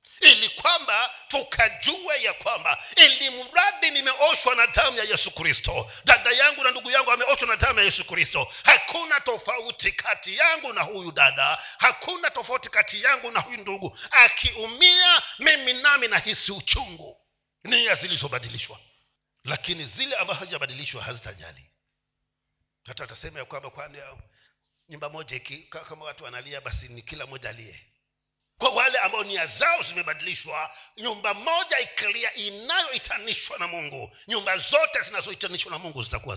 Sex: male